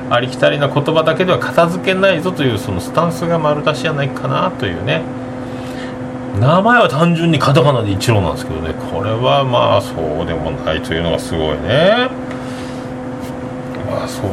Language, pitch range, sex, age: Japanese, 125-155 Hz, male, 40-59